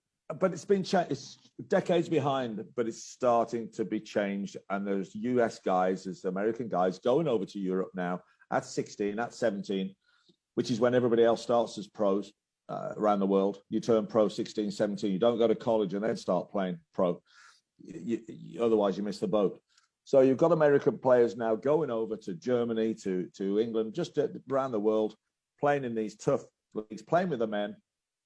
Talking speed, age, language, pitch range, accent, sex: 180 wpm, 50-69, English, 105-125 Hz, British, male